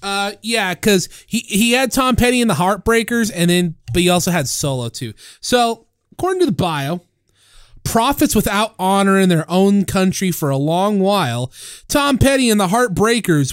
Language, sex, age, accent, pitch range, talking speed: English, male, 30-49, American, 155-230 Hz, 180 wpm